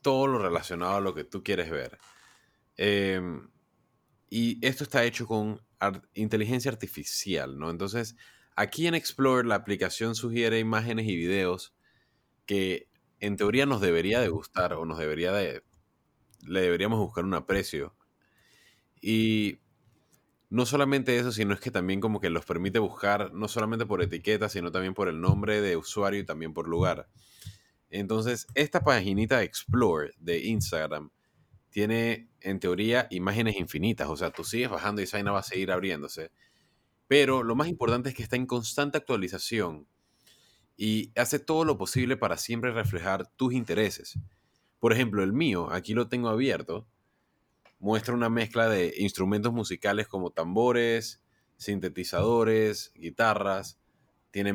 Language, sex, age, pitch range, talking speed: Spanish, male, 30-49, 95-120 Hz, 145 wpm